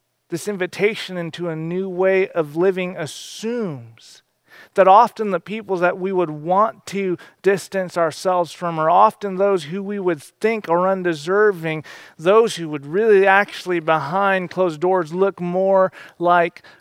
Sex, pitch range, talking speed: male, 150-180 Hz, 145 wpm